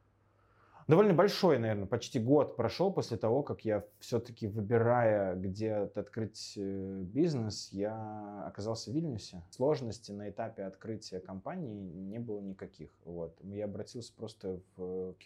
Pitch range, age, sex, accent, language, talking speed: 95-110 Hz, 20-39, male, native, Russian, 125 wpm